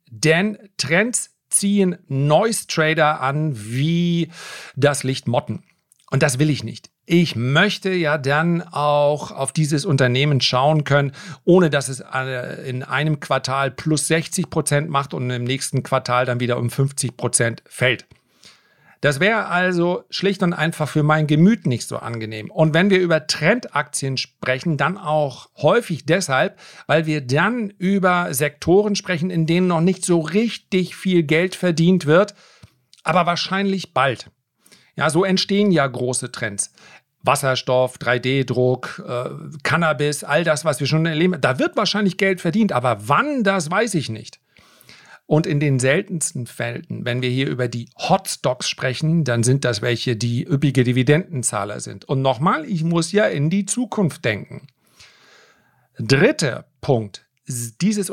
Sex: male